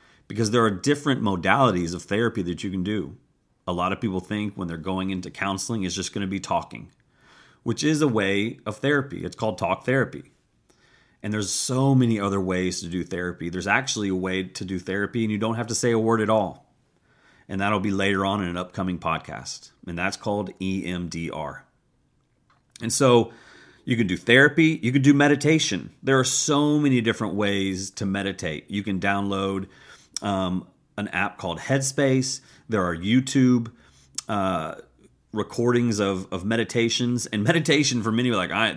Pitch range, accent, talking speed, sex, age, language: 95-120 Hz, American, 180 wpm, male, 30-49, English